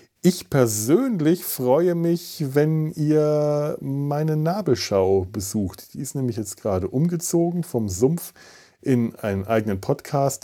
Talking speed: 120 wpm